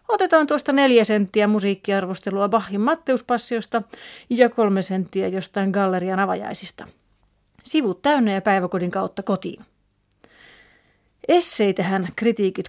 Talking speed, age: 100 wpm, 30-49